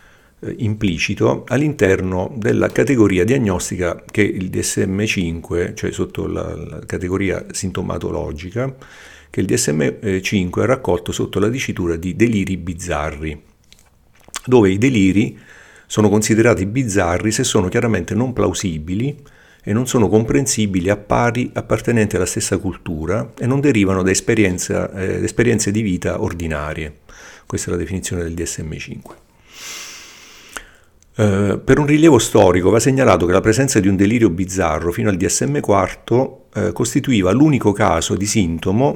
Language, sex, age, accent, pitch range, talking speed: Italian, male, 50-69, native, 85-110 Hz, 135 wpm